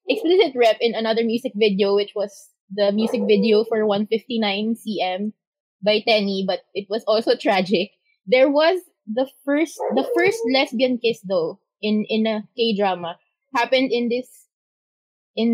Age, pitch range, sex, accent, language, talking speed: 20-39, 210-275 Hz, female, Filipino, English, 145 wpm